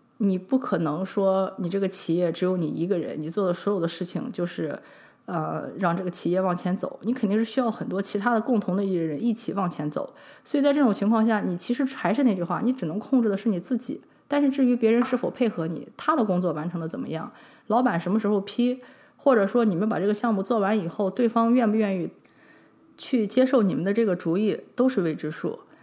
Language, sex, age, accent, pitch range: English, female, 20-39, Chinese, 185-245 Hz